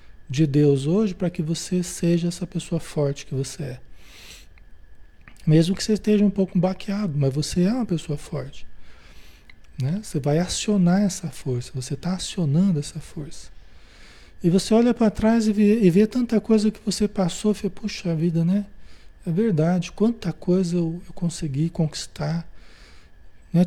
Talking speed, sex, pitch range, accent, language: 165 wpm, male, 140-195 Hz, Brazilian, Portuguese